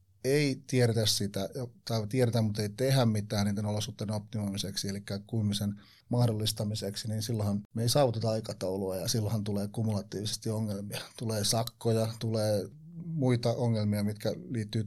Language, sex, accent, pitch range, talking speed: Finnish, male, native, 105-120 Hz, 135 wpm